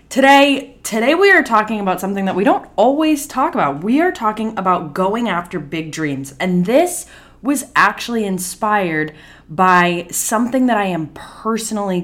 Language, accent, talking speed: English, American, 160 wpm